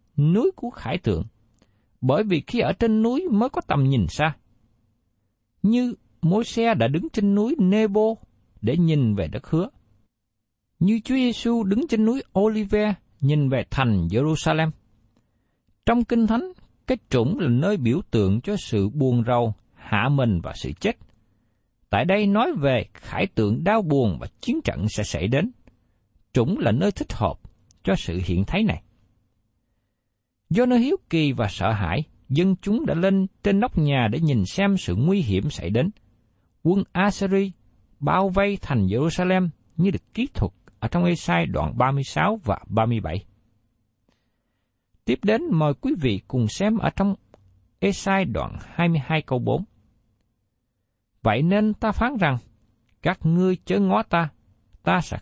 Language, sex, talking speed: Vietnamese, male, 160 wpm